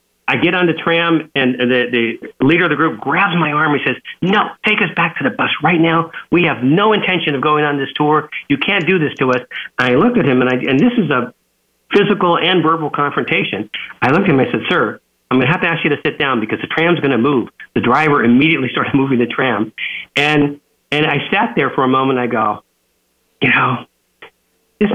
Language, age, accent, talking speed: English, 50-69, American, 235 wpm